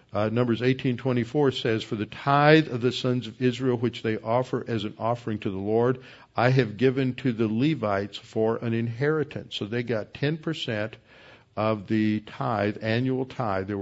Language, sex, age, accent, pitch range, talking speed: English, male, 60-79, American, 110-130 Hz, 175 wpm